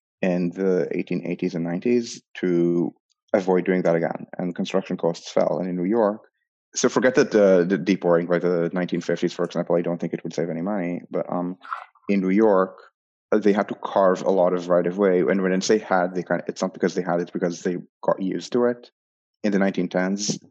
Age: 30-49